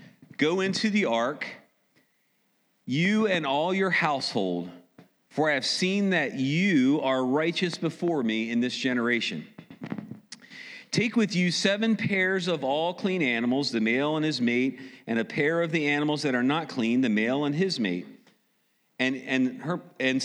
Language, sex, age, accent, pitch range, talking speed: English, male, 40-59, American, 115-175 Hz, 165 wpm